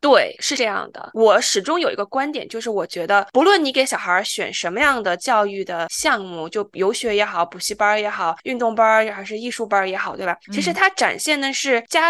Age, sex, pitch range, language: 20-39, female, 205-305 Hz, Chinese